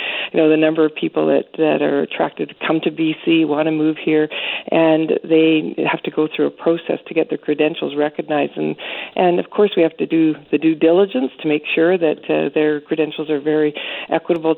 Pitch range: 155-180 Hz